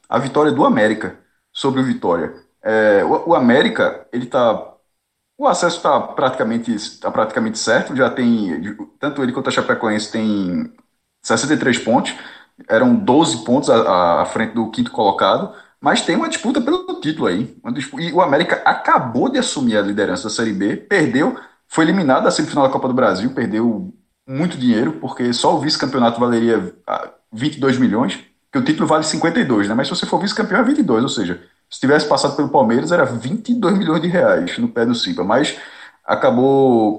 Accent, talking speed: Brazilian, 175 wpm